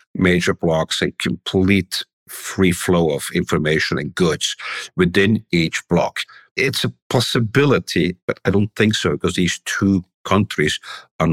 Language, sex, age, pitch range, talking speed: English, male, 60-79, 85-105 Hz, 140 wpm